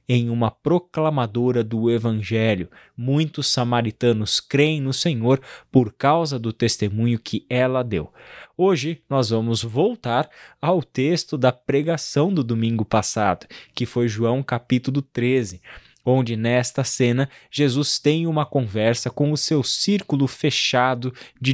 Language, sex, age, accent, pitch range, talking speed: Portuguese, male, 20-39, Brazilian, 115-145 Hz, 130 wpm